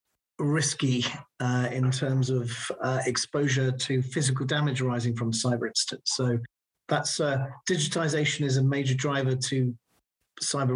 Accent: British